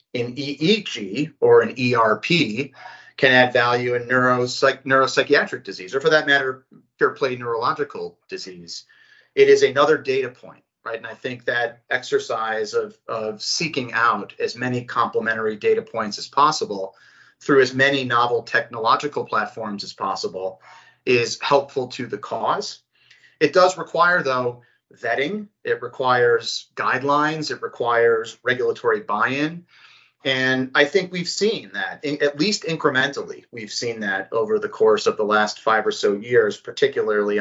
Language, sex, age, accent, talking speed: English, male, 40-59, American, 145 wpm